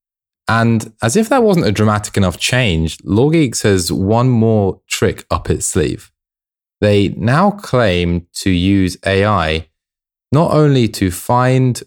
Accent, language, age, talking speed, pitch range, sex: British, English, 20-39, 135 wpm, 85-110 Hz, male